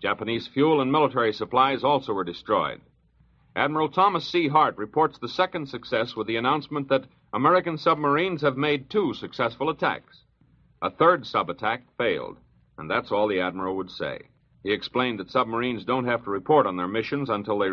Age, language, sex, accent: 60-79, English, male, American